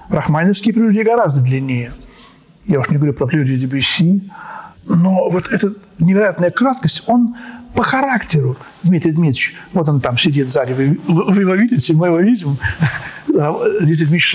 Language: Russian